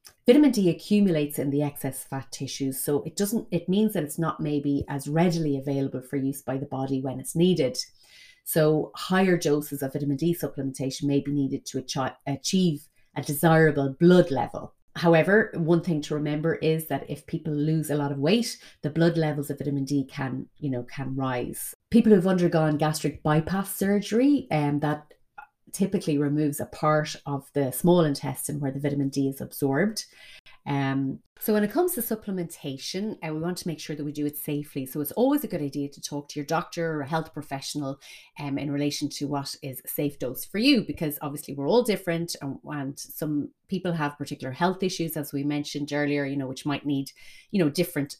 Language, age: English, 30-49